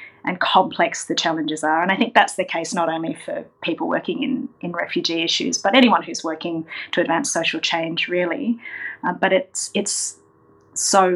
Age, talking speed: 30-49, 185 wpm